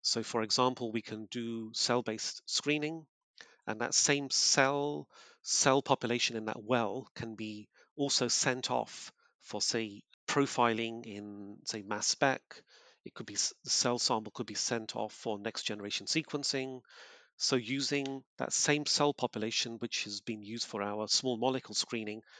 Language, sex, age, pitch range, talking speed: English, male, 30-49, 110-130 Hz, 160 wpm